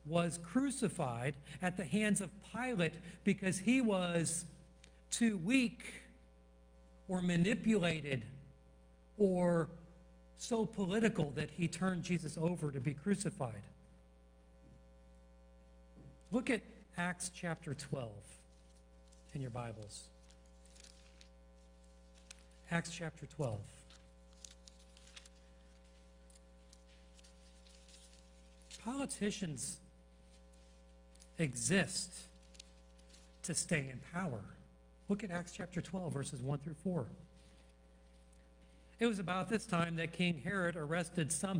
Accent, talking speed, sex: American, 90 wpm, male